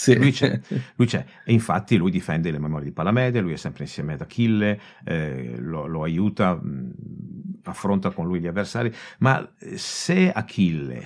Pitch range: 105-135 Hz